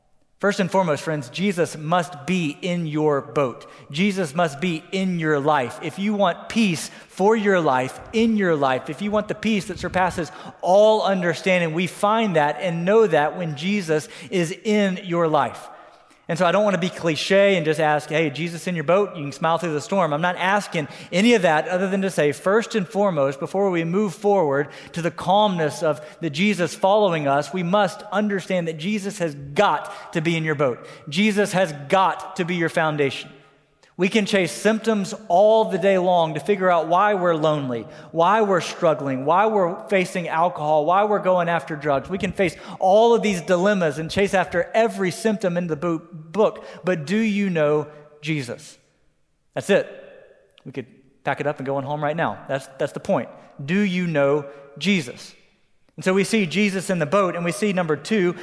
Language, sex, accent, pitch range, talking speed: English, male, American, 155-200 Hz, 200 wpm